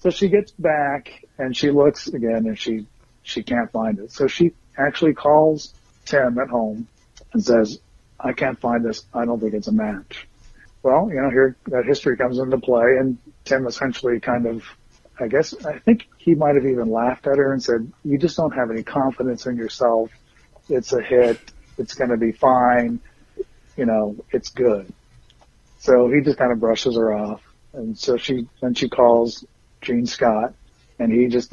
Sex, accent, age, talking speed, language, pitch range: male, American, 40-59, 190 wpm, English, 115-130 Hz